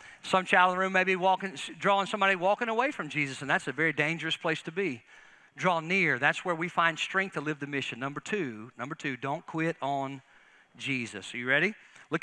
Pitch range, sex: 150-200 Hz, male